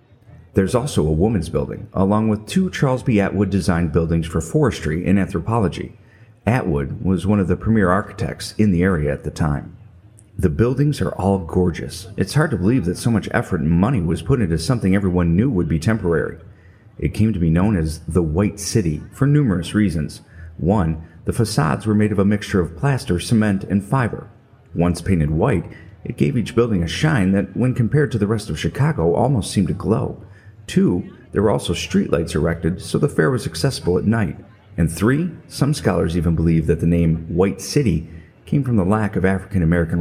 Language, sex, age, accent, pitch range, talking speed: English, male, 40-59, American, 85-110 Hz, 195 wpm